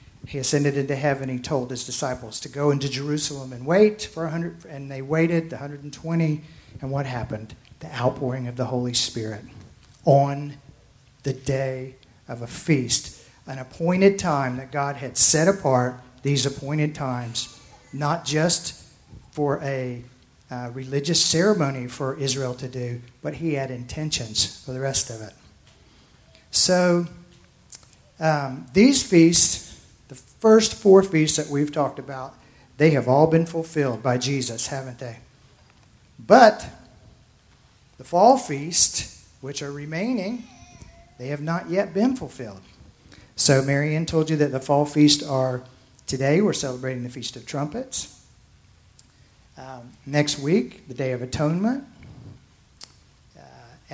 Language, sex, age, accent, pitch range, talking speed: English, male, 50-69, American, 125-155 Hz, 140 wpm